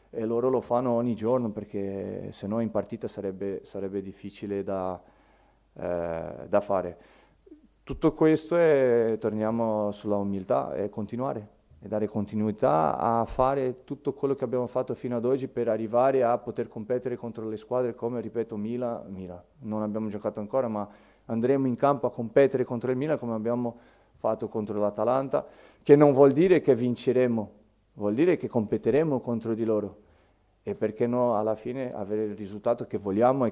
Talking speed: 165 wpm